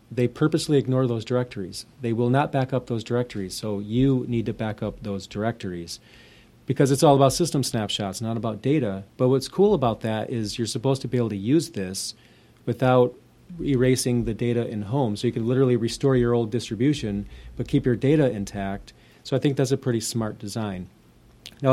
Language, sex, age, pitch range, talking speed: English, male, 40-59, 105-130 Hz, 195 wpm